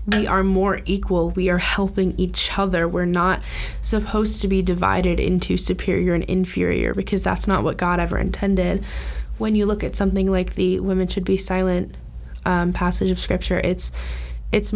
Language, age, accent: English, 20-39, American